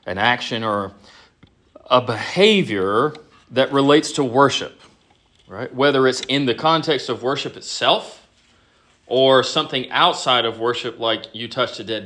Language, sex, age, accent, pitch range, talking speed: English, male, 40-59, American, 115-160 Hz, 140 wpm